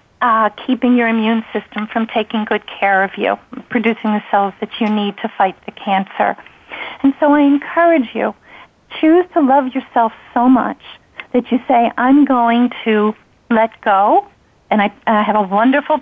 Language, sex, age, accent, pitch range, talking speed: English, female, 50-69, American, 220-260 Hz, 170 wpm